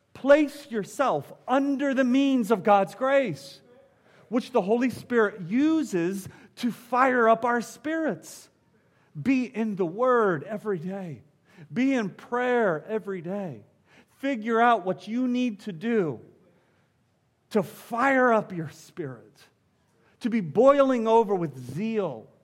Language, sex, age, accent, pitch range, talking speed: English, male, 40-59, American, 145-230 Hz, 125 wpm